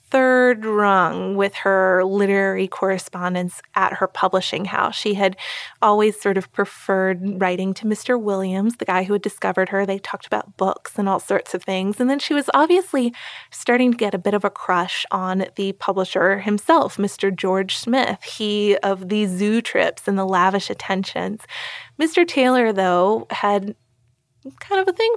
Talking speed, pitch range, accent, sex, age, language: 170 wpm, 195-245 Hz, American, female, 20-39, English